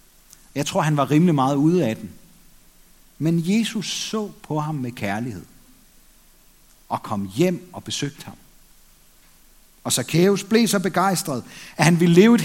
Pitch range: 135-195 Hz